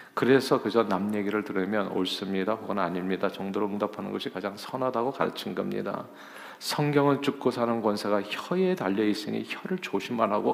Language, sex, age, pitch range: Korean, male, 40-59, 105-145 Hz